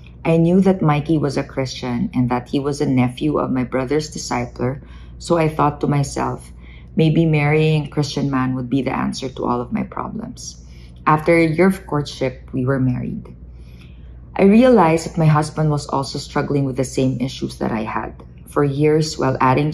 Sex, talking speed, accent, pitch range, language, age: female, 190 wpm, Filipino, 120-150 Hz, English, 20-39